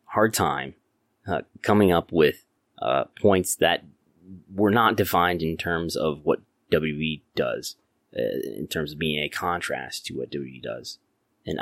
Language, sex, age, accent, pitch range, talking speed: English, male, 20-39, American, 80-100 Hz, 155 wpm